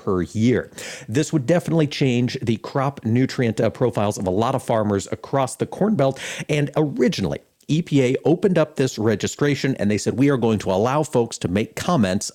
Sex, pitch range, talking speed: male, 110-145 Hz, 180 wpm